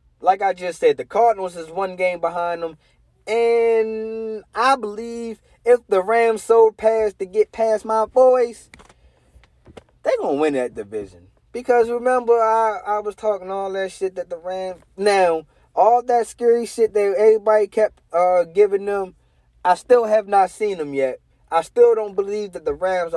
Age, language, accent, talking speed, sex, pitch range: 20-39, English, American, 175 wpm, male, 140-220 Hz